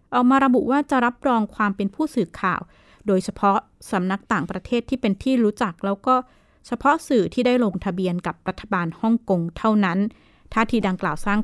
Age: 20-39